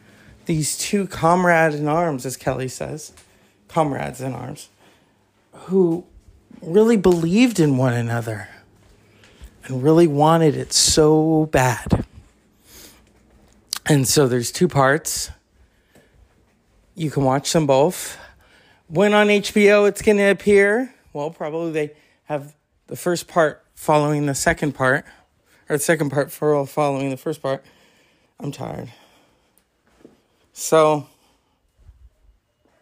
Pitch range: 130-165 Hz